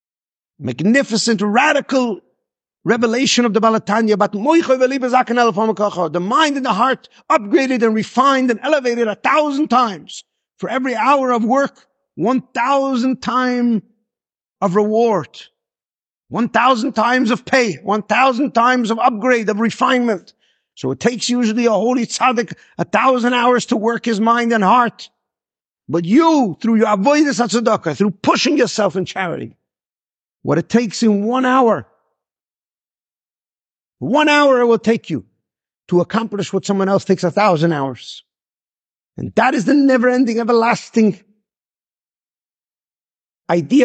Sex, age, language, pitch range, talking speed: male, 50-69, English, 210-255 Hz, 135 wpm